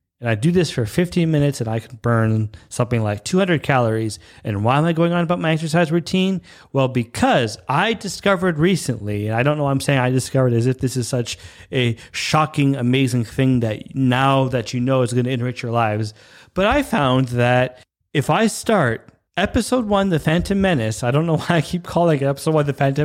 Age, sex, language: 30-49, male, English